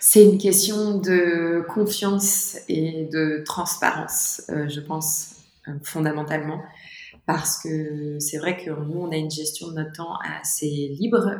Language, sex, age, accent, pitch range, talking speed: French, female, 20-39, French, 145-170 Hz, 140 wpm